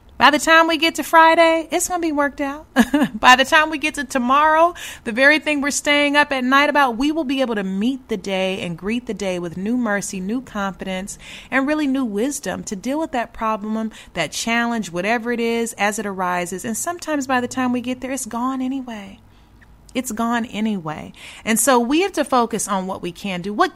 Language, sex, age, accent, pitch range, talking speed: English, female, 30-49, American, 190-270 Hz, 225 wpm